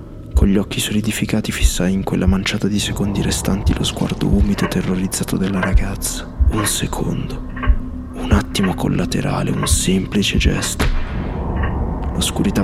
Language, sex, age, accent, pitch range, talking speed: Italian, male, 20-39, native, 80-100 Hz, 130 wpm